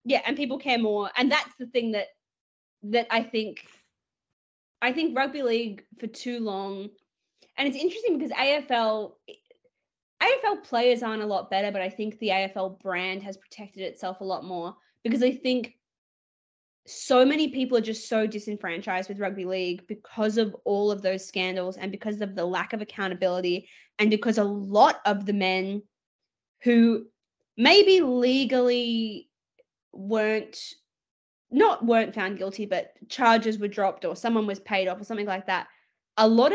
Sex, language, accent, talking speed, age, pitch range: female, English, Australian, 165 wpm, 20-39, 195-235 Hz